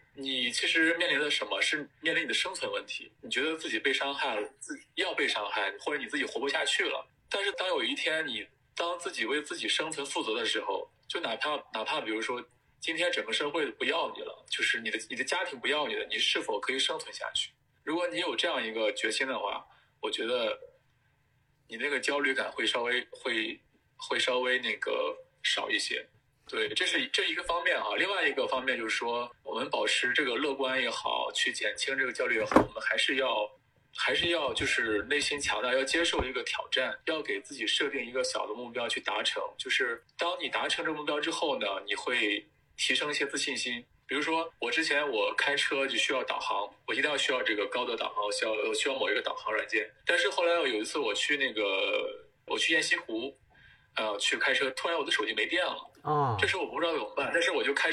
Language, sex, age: Chinese, male, 20-39